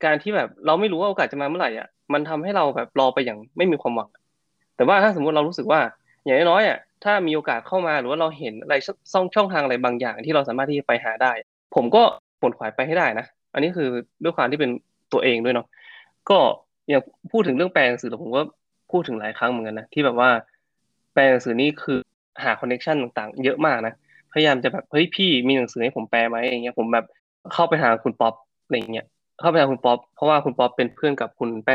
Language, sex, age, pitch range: Thai, male, 20-39, 120-155 Hz